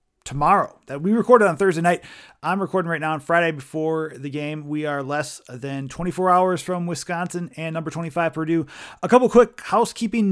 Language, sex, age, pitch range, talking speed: English, male, 30-49, 150-185 Hz, 185 wpm